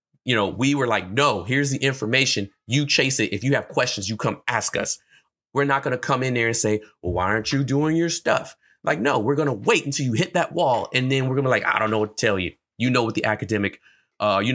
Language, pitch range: English, 105-135 Hz